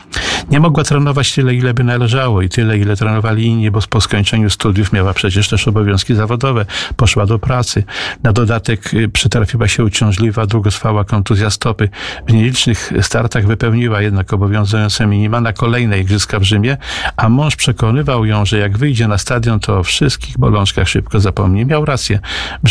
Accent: native